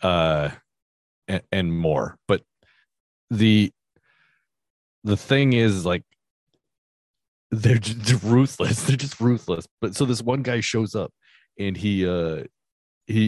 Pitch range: 75-105 Hz